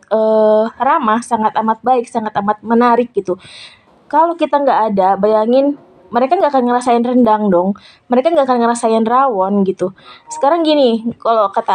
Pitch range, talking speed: 220-265 Hz, 155 wpm